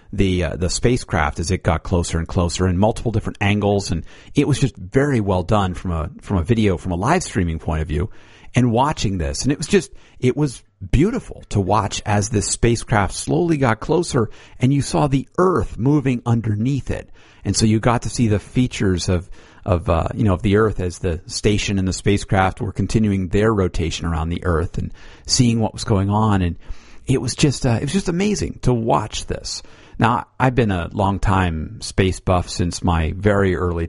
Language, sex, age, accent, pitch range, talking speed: English, male, 50-69, American, 90-120 Hz, 210 wpm